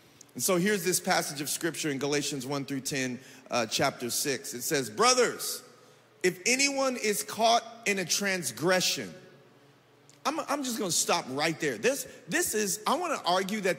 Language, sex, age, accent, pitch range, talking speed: English, male, 40-59, American, 180-245 Hz, 180 wpm